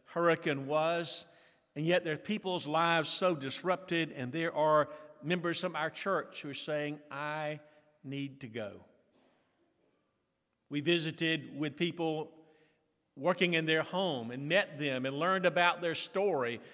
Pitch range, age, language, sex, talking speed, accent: 145-180 Hz, 50-69, English, male, 145 wpm, American